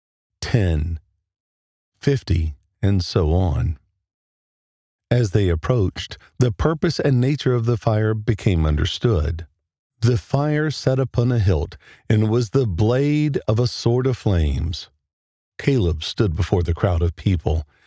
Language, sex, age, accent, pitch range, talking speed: English, male, 50-69, American, 90-125 Hz, 130 wpm